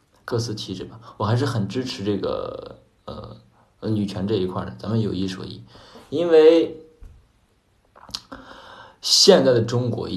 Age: 20-39